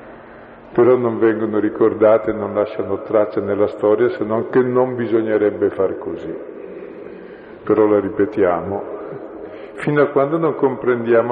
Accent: native